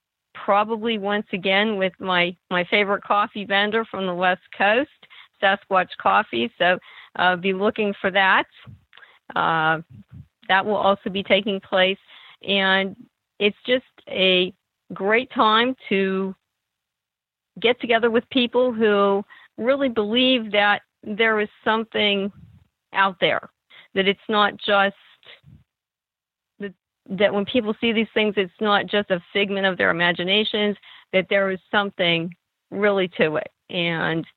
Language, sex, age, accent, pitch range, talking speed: English, female, 50-69, American, 185-210 Hz, 130 wpm